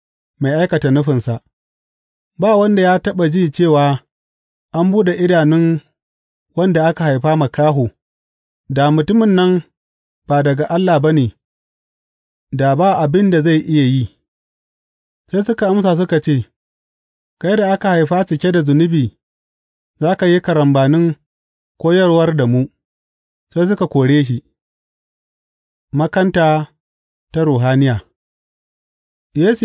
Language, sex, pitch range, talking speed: English, male, 120-180 Hz, 95 wpm